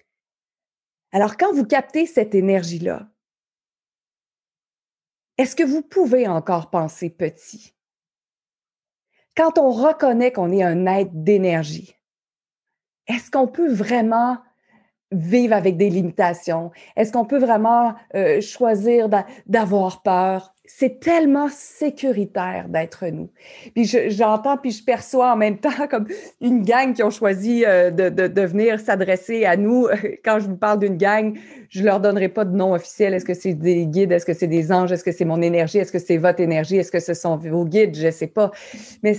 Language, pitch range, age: French, 185-245 Hz, 30-49